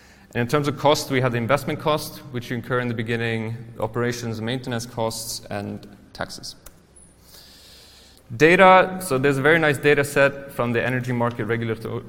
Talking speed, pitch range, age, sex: 165 wpm, 110-140 Hz, 20-39, male